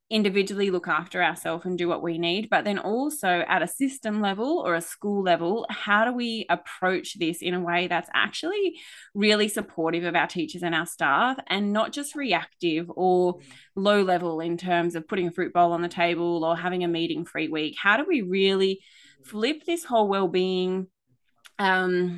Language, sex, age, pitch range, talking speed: English, female, 20-39, 175-215 Hz, 190 wpm